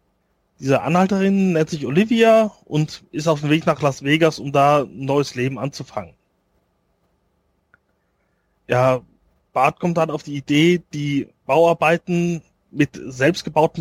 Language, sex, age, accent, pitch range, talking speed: German, male, 30-49, German, 135-165 Hz, 135 wpm